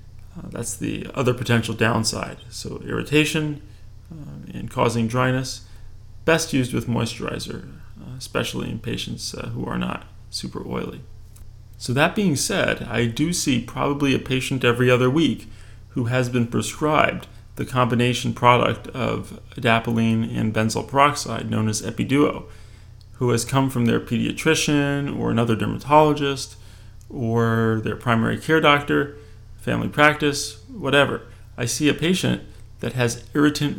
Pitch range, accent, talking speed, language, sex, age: 110-135 Hz, American, 140 wpm, English, male, 30-49